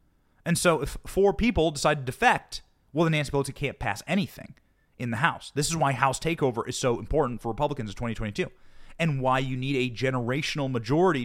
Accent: American